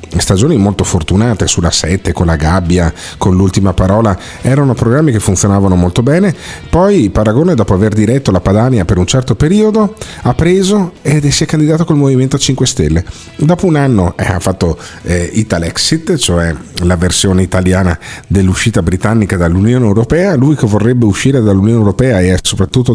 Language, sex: Italian, male